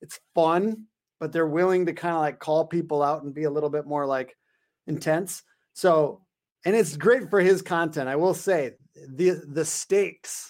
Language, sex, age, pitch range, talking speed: English, male, 30-49, 155-195 Hz, 190 wpm